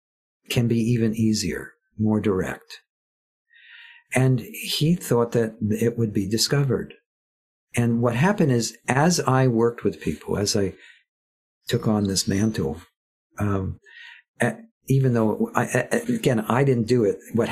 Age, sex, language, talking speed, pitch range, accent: 50-69, male, English, 135 wpm, 105-130 Hz, American